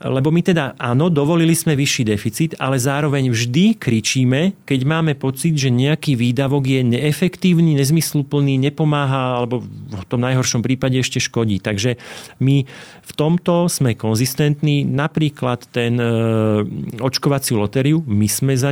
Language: Slovak